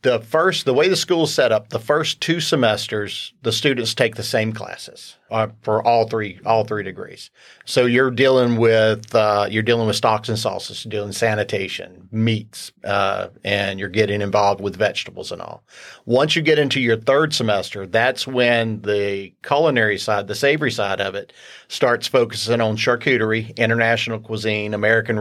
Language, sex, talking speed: English, male, 180 wpm